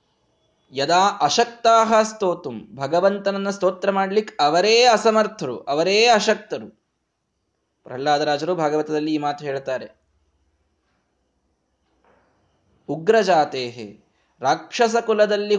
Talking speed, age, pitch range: 70 wpm, 20-39, 145-195 Hz